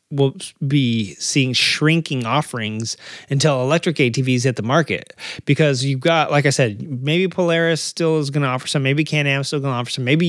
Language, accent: English, American